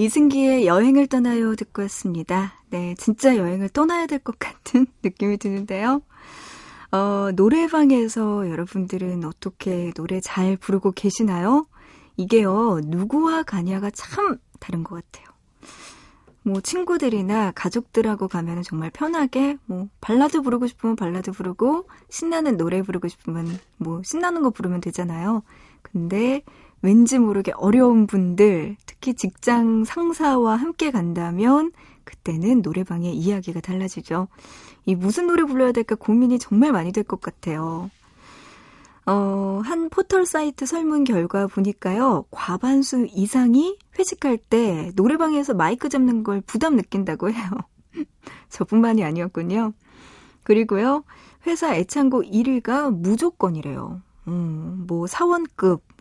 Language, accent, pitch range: Korean, native, 185-260 Hz